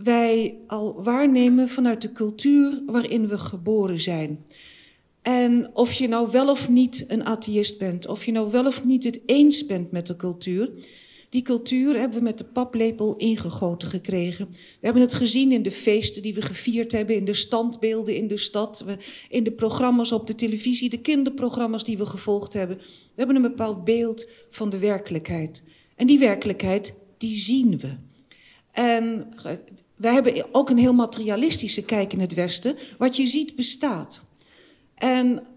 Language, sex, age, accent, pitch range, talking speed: Dutch, female, 40-59, Dutch, 200-245 Hz, 170 wpm